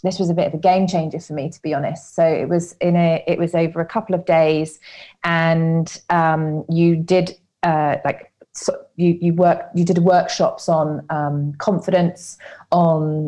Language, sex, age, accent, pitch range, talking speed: English, female, 30-49, British, 165-210 Hz, 185 wpm